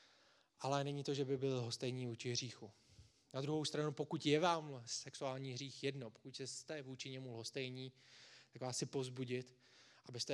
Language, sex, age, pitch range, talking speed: Czech, male, 20-39, 120-140 Hz, 165 wpm